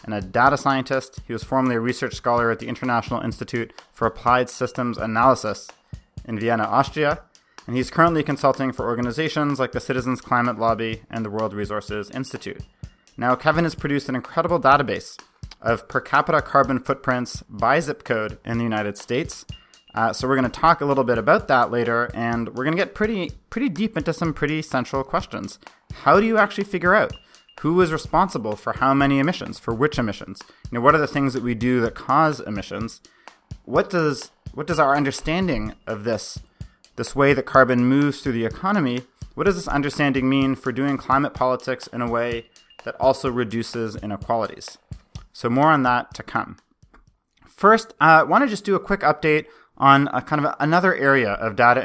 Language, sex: English, male